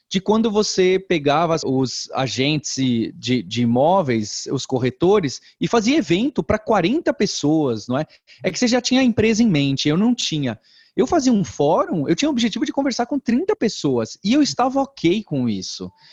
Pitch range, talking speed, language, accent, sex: 135-205 Hz, 185 wpm, English, Brazilian, male